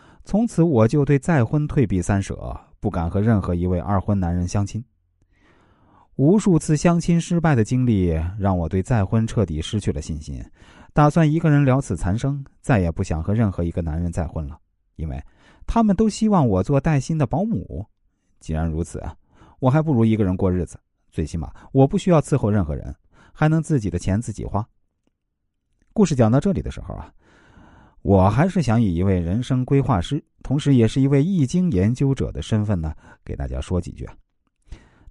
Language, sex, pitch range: Chinese, male, 90-145 Hz